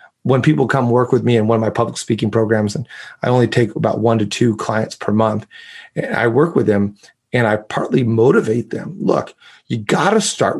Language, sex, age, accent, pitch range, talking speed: English, male, 30-49, American, 115-145 Hz, 220 wpm